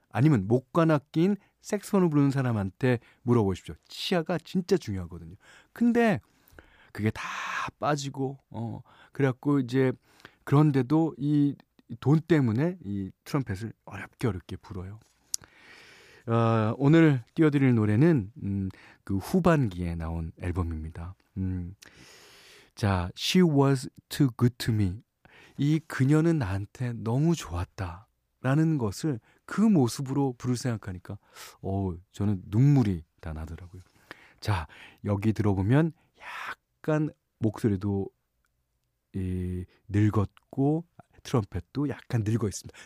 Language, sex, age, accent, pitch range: Korean, male, 40-59, native, 95-150 Hz